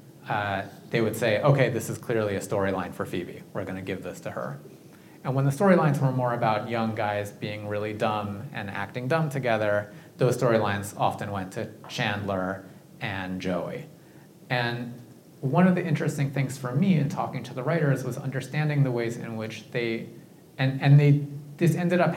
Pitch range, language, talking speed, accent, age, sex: 105-140 Hz, English, 185 wpm, American, 30-49, male